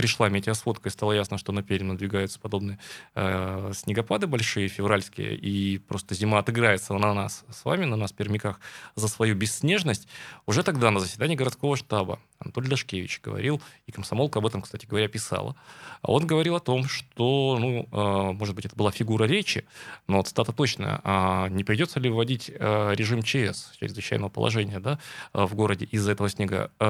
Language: Russian